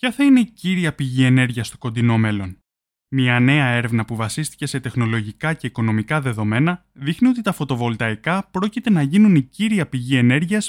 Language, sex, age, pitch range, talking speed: Greek, male, 20-39, 120-195 Hz, 175 wpm